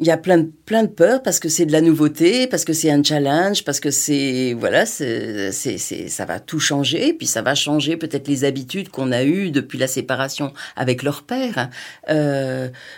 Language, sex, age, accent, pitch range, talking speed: French, female, 40-59, French, 150-220 Hz, 215 wpm